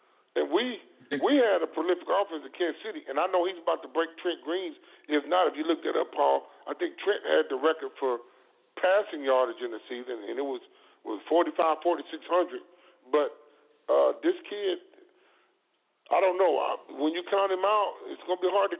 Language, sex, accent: English, male, American